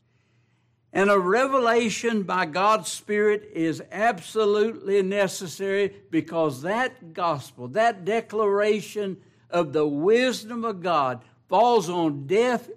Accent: American